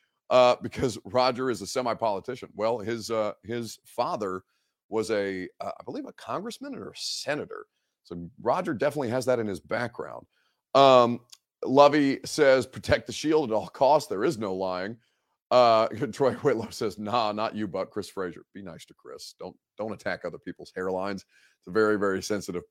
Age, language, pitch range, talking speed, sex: 40-59, English, 95-130 Hz, 175 wpm, male